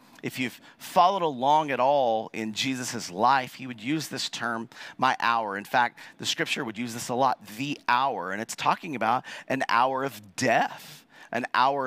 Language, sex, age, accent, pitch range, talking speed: English, male, 40-59, American, 110-155 Hz, 185 wpm